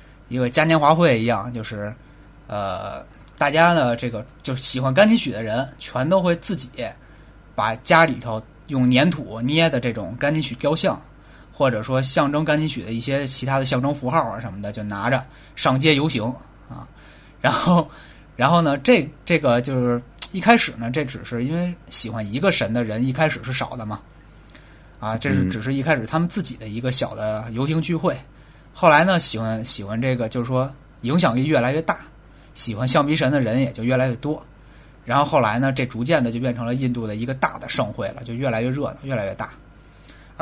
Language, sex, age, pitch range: Chinese, male, 20-39, 115-155 Hz